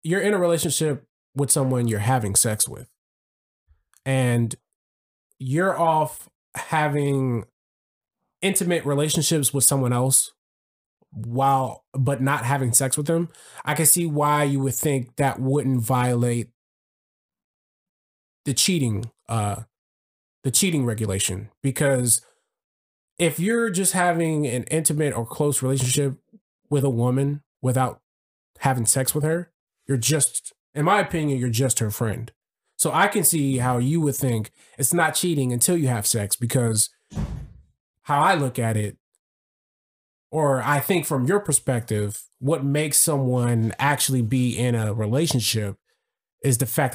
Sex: male